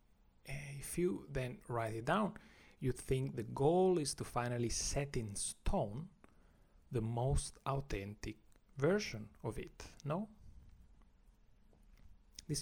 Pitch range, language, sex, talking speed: 105-145 Hz, English, male, 115 wpm